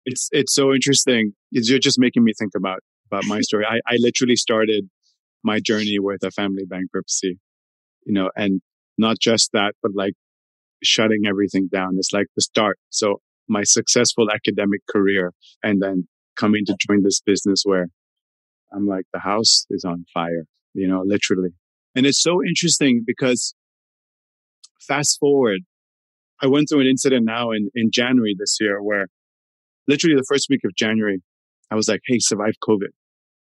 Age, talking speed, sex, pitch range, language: 30-49, 165 wpm, male, 95-125 Hz, English